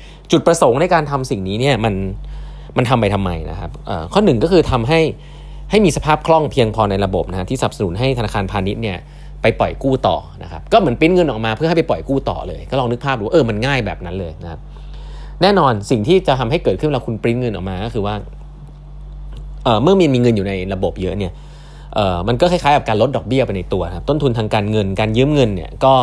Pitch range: 100-145 Hz